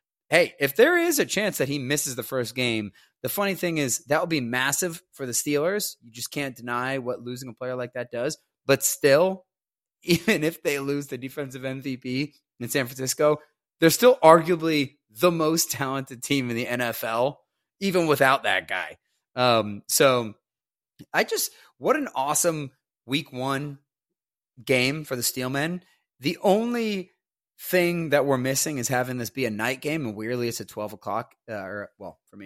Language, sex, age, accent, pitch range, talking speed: English, male, 30-49, American, 120-155 Hz, 175 wpm